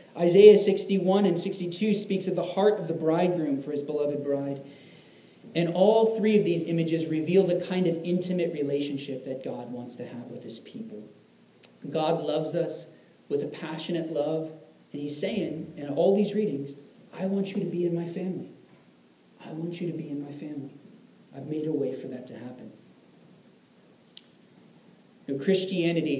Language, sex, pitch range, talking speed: English, male, 150-185 Hz, 170 wpm